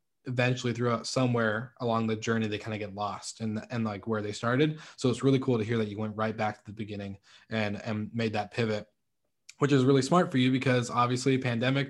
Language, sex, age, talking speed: English, male, 20-39, 225 wpm